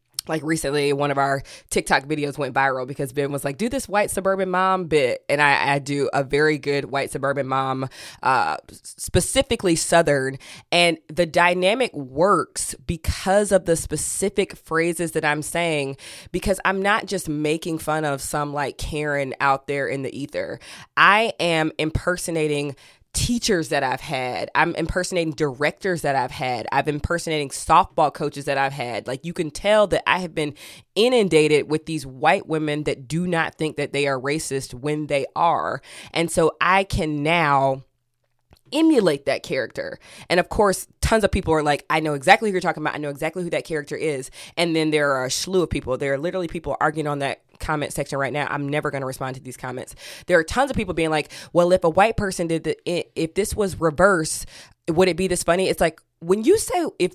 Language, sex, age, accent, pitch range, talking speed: English, female, 20-39, American, 140-180 Hz, 200 wpm